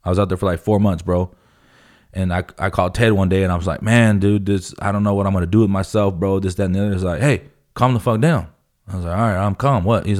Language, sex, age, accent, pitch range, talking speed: English, male, 20-39, American, 90-110 Hz, 320 wpm